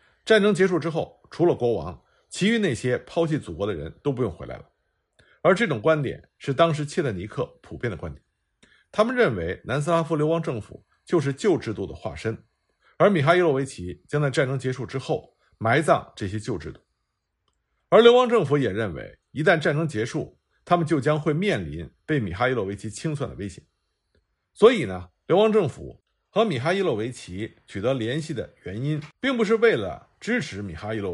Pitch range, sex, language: 105-170 Hz, male, Chinese